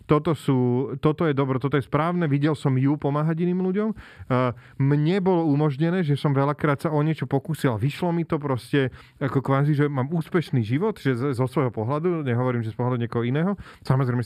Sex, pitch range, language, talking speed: male, 125-165 Hz, Slovak, 200 wpm